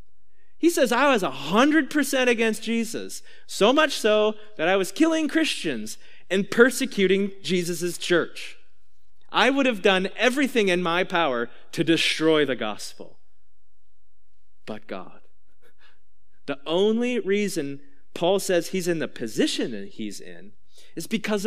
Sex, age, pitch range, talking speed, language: male, 30-49, 140-205 Hz, 130 wpm, English